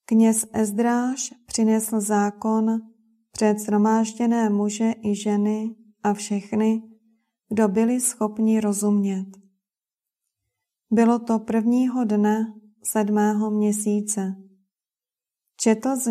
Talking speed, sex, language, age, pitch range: 85 wpm, female, Czech, 30-49, 205-225 Hz